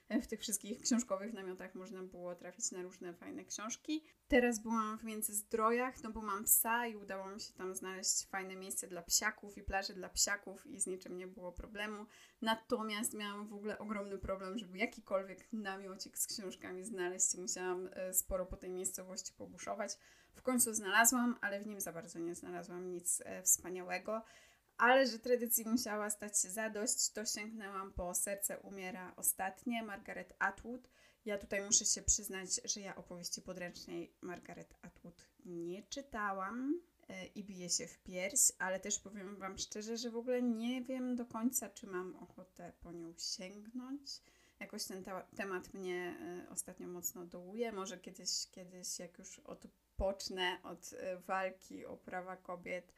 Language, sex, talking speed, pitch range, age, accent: Polish, female, 160 wpm, 180-225 Hz, 20-39, native